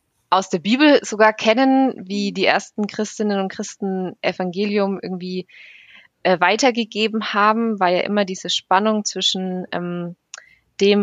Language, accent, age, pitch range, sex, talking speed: German, German, 20-39, 175-210 Hz, female, 130 wpm